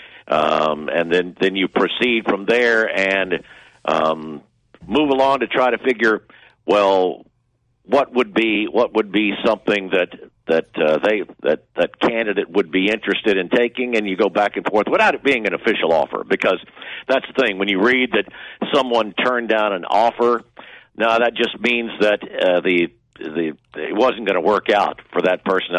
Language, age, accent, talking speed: English, 50-69, American, 180 wpm